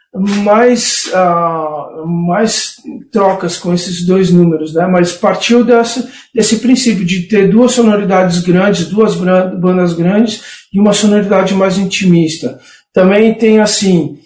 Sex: male